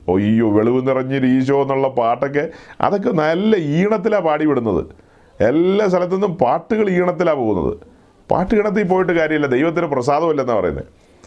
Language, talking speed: Malayalam, 130 wpm